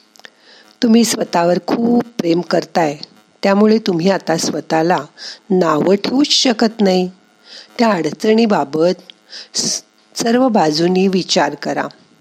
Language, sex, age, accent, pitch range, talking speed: Marathi, female, 50-69, native, 170-235 Hz, 90 wpm